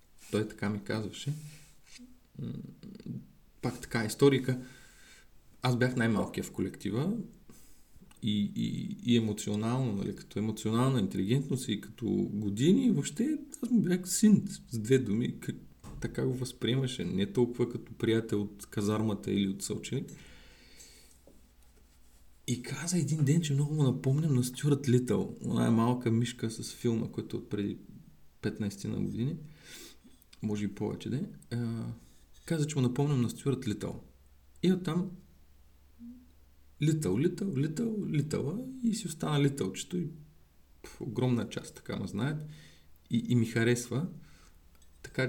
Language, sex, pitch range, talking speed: Bulgarian, male, 100-145 Hz, 130 wpm